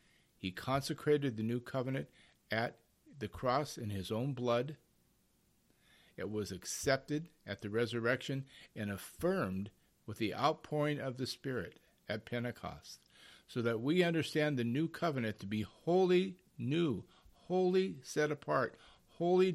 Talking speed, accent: 130 wpm, American